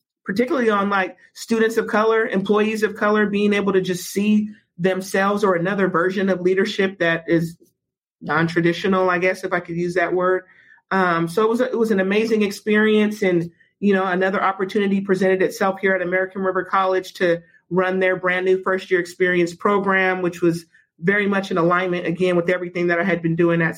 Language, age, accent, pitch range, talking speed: English, 30-49, American, 170-195 Hz, 190 wpm